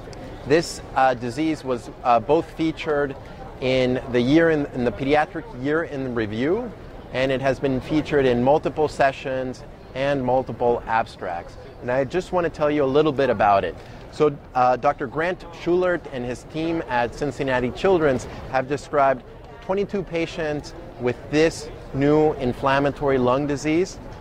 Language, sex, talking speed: English, male, 150 wpm